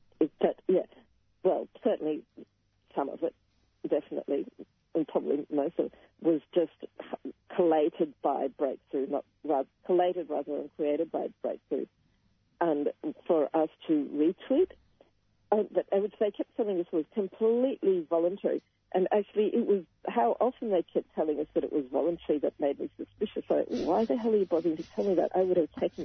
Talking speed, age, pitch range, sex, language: 175 wpm, 50-69, 130-195 Hz, female, English